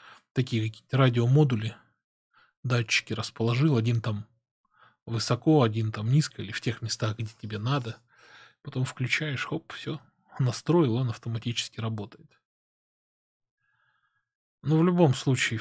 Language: Russian